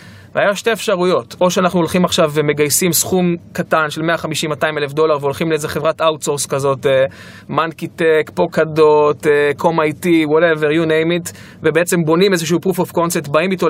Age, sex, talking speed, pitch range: 20-39, male, 155 wpm, 150-190 Hz